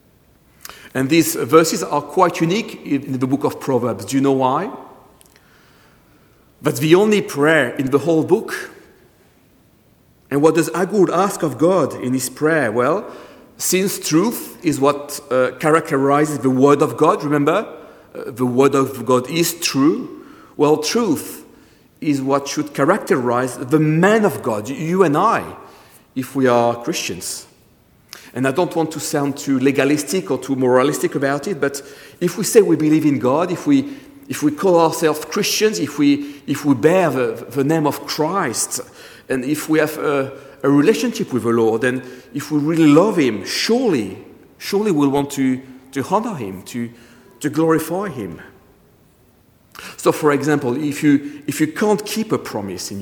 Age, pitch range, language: 40-59, 135-170 Hz, English